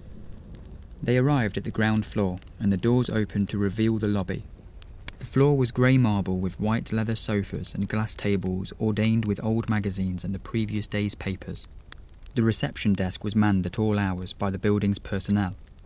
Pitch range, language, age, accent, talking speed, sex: 90-110 Hz, English, 20-39, British, 180 wpm, male